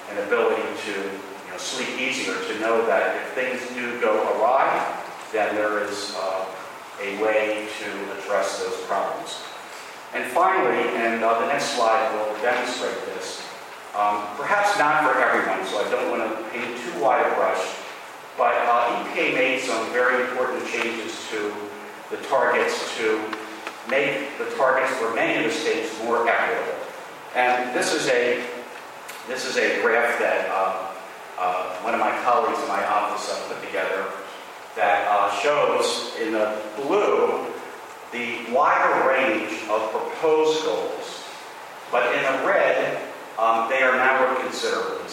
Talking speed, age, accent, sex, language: 150 wpm, 40-59, American, male, English